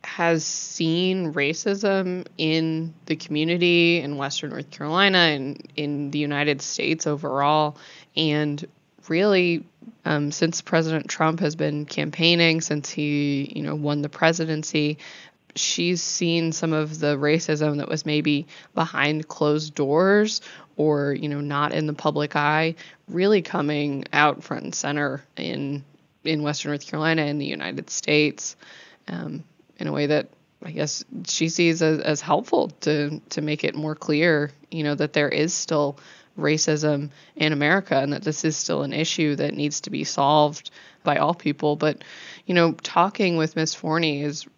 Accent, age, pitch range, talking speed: American, 20-39, 150-165 Hz, 155 wpm